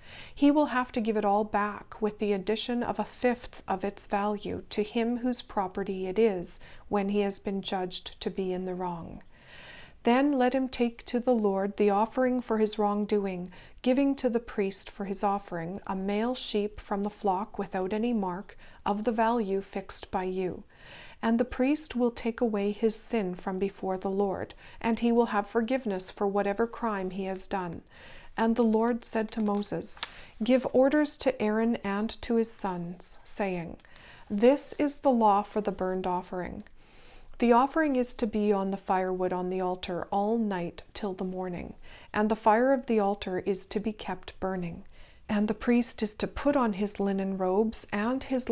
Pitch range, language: 195-235 Hz, English